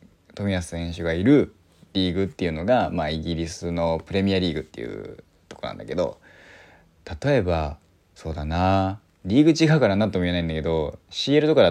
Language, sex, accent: Japanese, male, native